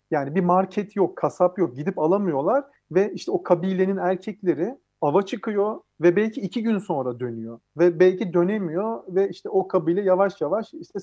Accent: native